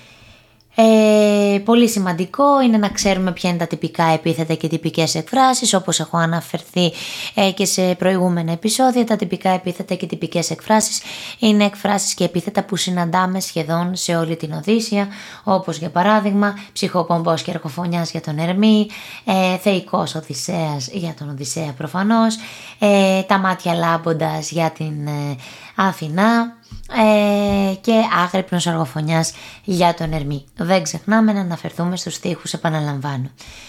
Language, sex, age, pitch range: Greek, female, 20-39, 165-210 Hz